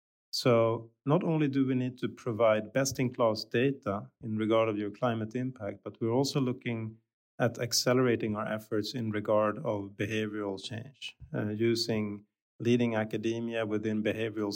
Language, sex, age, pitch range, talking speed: English, male, 30-49, 110-125 Hz, 145 wpm